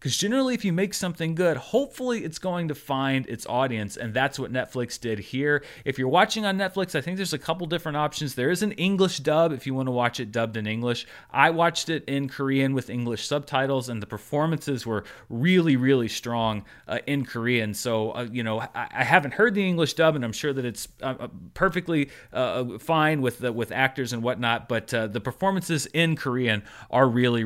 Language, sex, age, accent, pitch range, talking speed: English, male, 30-49, American, 120-160 Hz, 210 wpm